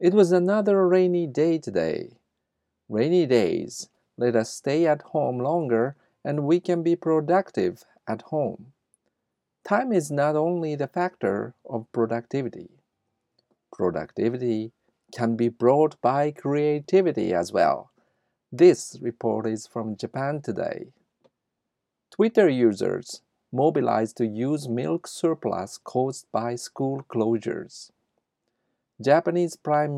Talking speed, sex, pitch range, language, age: 110 wpm, male, 115-165 Hz, English, 50-69